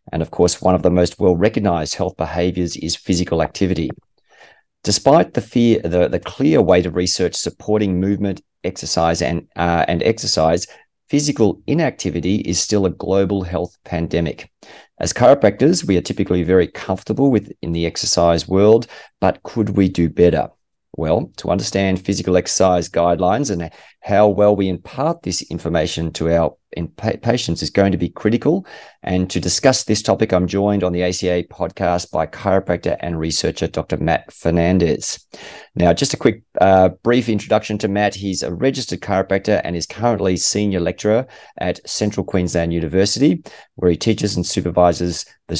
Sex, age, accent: male, 40-59, Australian